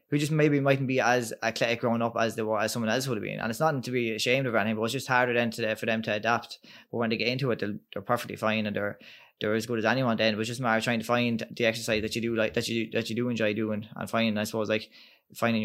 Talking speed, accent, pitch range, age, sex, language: 305 wpm, Irish, 110-120 Hz, 20-39, male, English